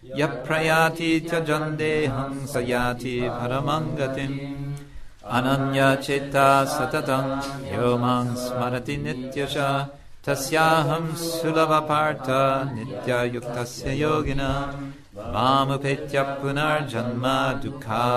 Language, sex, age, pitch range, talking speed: English, male, 60-79, 125-140 Hz, 55 wpm